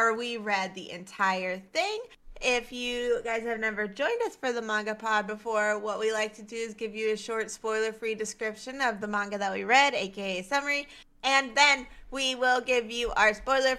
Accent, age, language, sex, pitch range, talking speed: American, 20-39, English, female, 200-245 Hz, 205 wpm